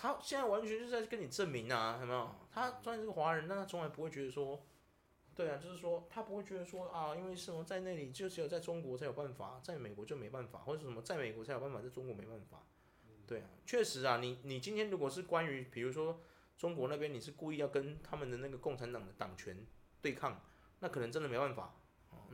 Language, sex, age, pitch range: Chinese, male, 20-39, 125-195 Hz